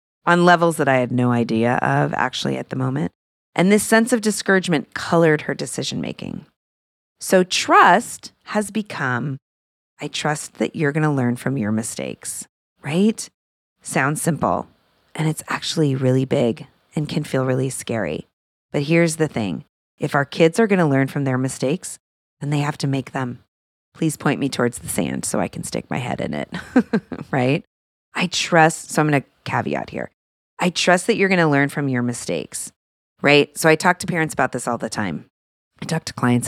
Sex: female